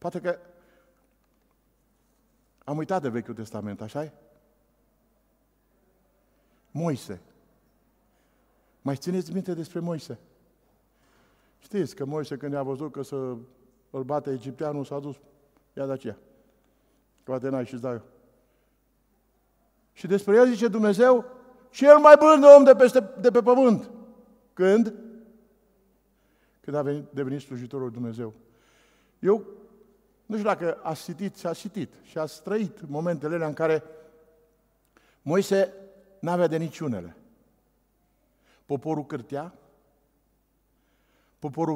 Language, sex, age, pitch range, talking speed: Romanian, male, 50-69, 145-195 Hz, 110 wpm